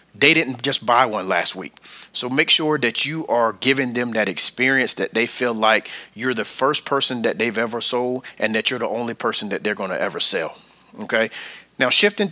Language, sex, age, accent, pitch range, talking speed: English, male, 30-49, American, 120-145 Hz, 215 wpm